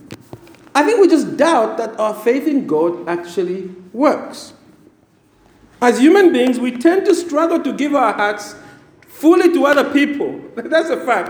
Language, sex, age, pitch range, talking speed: English, male, 50-69, 195-290 Hz, 160 wpm